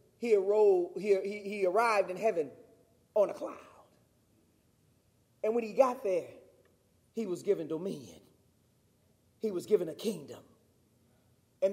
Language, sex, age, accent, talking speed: English, male, 30-49, American, 125 wpm